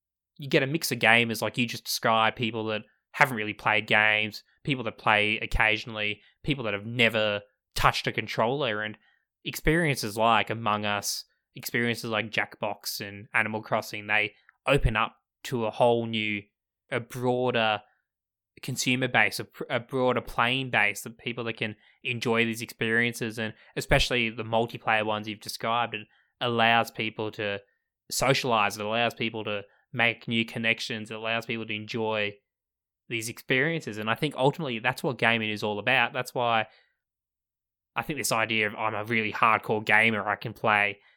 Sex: male